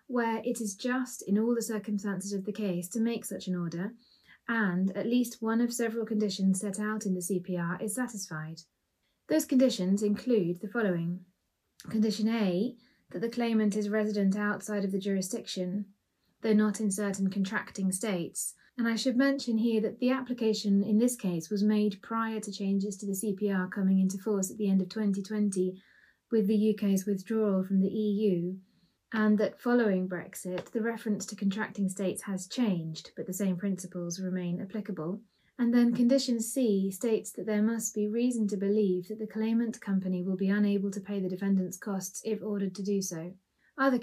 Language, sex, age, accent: English, female, 30-49, British